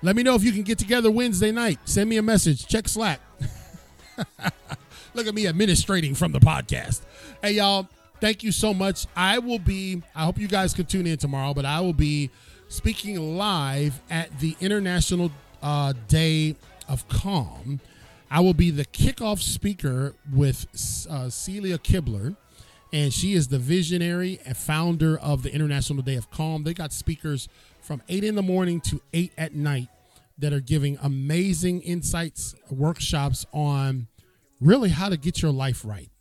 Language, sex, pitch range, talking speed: English, male, 140-180 Hz, 170 wpm